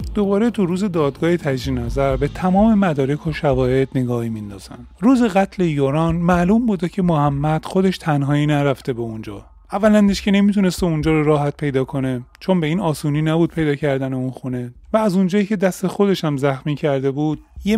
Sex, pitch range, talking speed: male, 135-185 Hz, 180 wpm